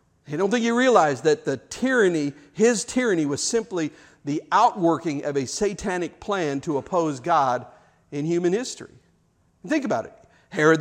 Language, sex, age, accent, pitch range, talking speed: English, male, 50-69, American, 170-225 Hz, 155 wpm